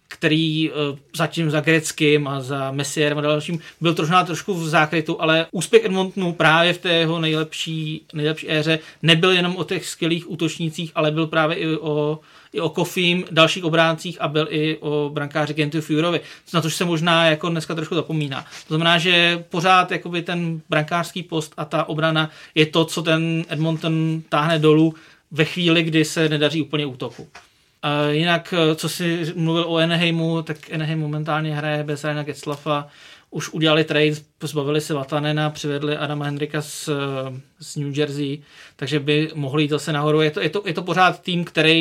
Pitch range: 150-165 Hz